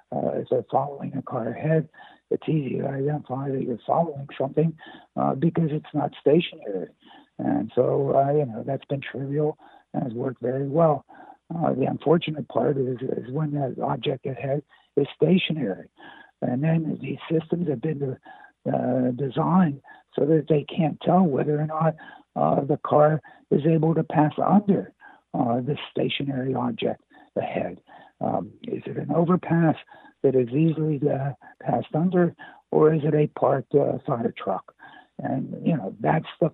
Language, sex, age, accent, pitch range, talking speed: English, male, 60-79, American, 140-160 Hz, 165 wpm